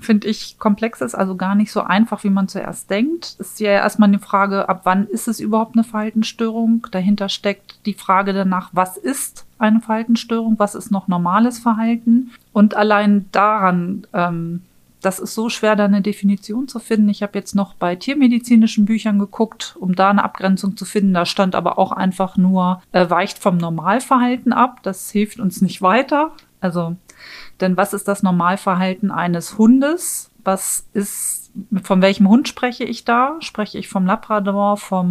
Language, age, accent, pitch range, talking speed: German, 40-59, German, 190-220 Hz, 180 wpm